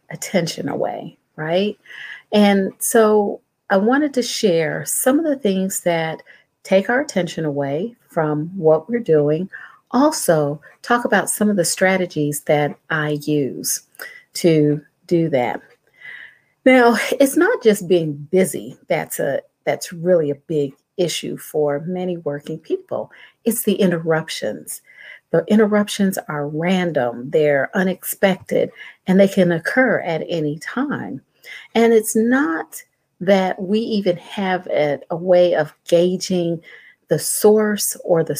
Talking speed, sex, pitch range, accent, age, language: 130 wpm, female, 155-210 Hz, American, 50-69, English